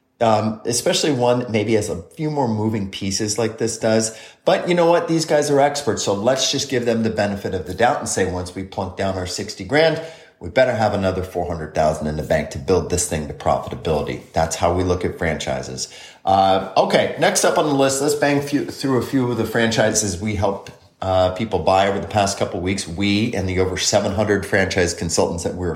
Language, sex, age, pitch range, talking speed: English, male, 30-49, 95-115 Hz, 225 wpm